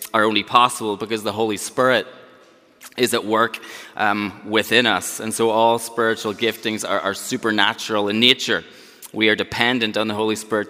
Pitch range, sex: 105-120 Hz, male